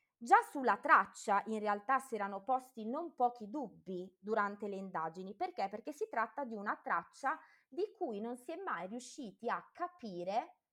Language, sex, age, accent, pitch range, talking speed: Italian, female, 20-39, native, 200-270 Hz, 170 wpm